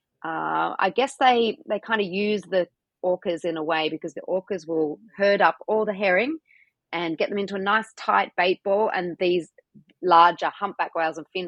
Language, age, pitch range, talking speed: English, 30-49, 155-190 Hz, 195 wpm